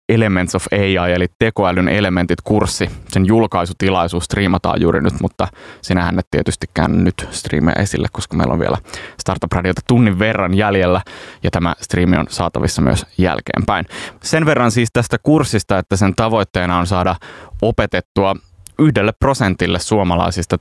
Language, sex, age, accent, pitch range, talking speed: Finnish, male, 20-39, native, 90-105 Hz, 140 wpm